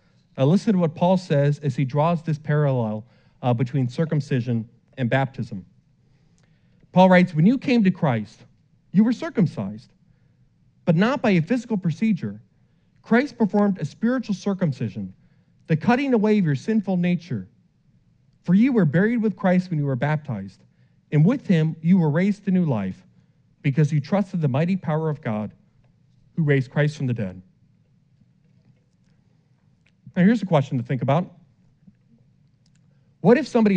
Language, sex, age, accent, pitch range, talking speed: English, male, 40-59, American, 145-190 Hz, 155 wpm